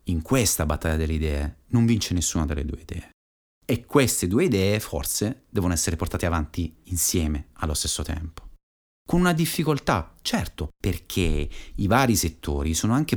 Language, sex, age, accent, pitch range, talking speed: Italian, male, 30-49, native, 80-125 Hz, 155 wpm